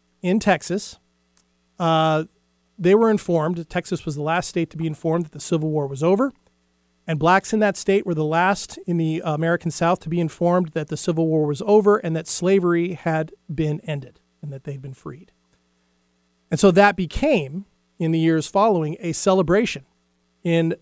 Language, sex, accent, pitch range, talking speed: English, male, American, 145-180 Hz, 180 wpm